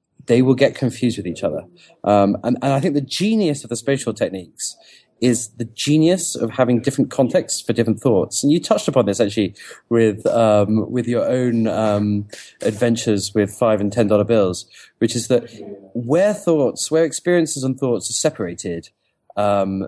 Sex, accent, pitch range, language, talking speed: male, British, 105-130 Hz, English, 180 wpm